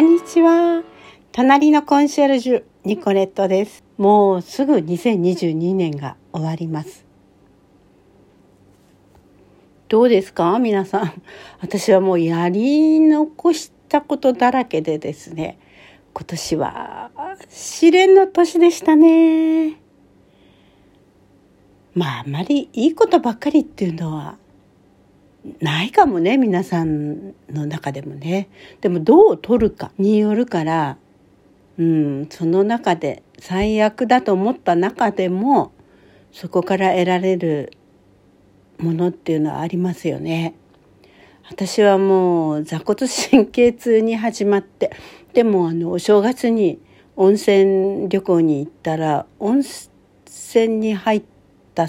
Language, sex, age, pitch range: Japanese, female, 60-79, 160-240 Hz